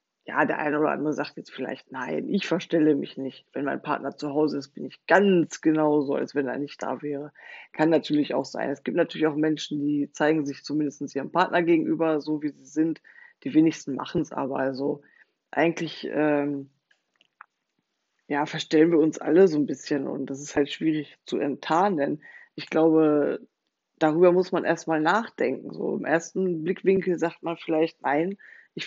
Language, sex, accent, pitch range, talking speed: German, female, German, 150-180 Hz, 185 wpm